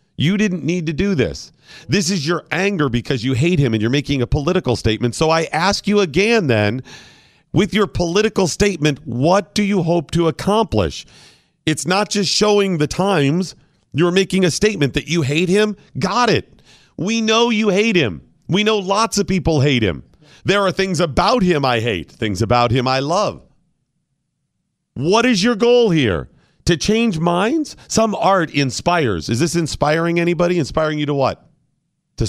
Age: 40-59